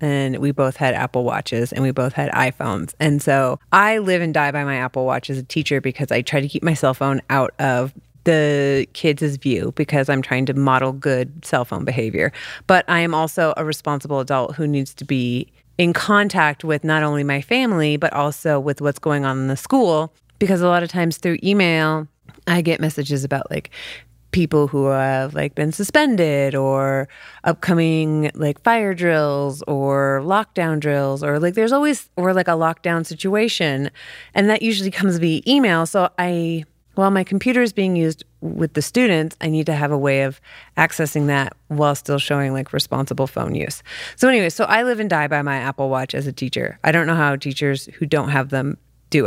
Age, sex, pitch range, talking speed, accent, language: 30-49, female, 135-170 Hz, 200 wpm, American, English